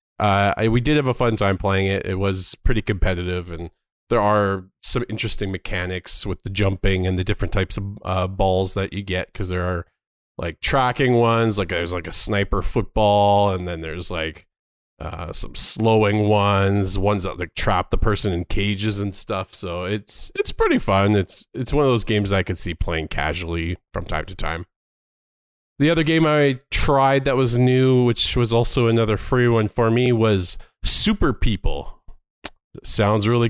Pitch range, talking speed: 95-115 Hz, 185 wpm